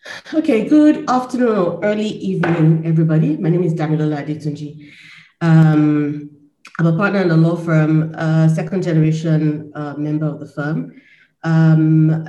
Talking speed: 140 wpm